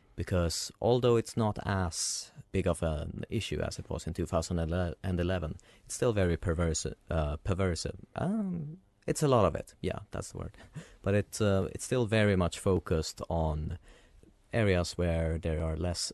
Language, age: English, 30-49